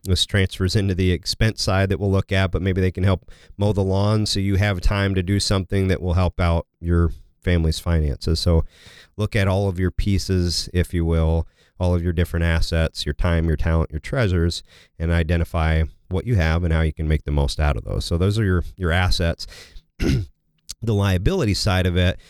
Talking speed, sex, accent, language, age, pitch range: 215 wpm, male, American, English, 40-59, 85-100 Hz